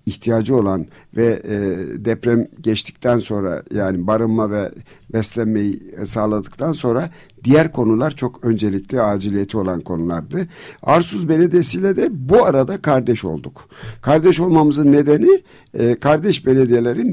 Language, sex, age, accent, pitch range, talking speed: Turkish, male, 60-79, native, 105-140 Hz, 110 wpm